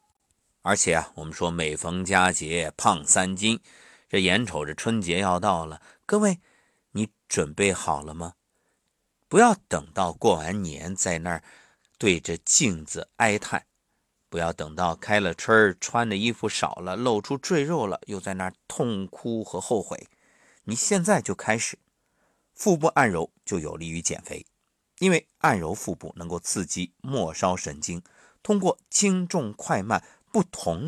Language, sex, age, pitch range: Chinese, male, 50-69, 85-140 Hz